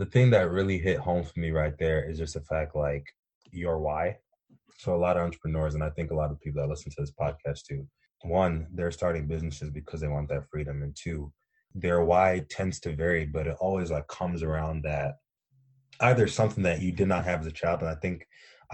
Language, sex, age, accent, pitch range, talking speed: English, male, 20-39, American, 80-100 Hz, 230 wpm